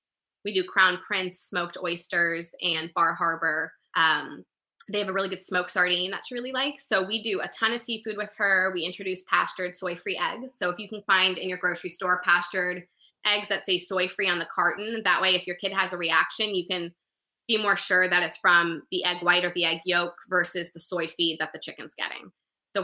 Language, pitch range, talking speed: English, 175-210 Hz, 220 wpm